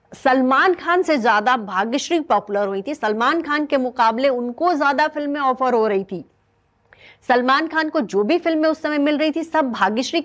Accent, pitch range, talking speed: Indian, 230-315 Hz, 175 wpm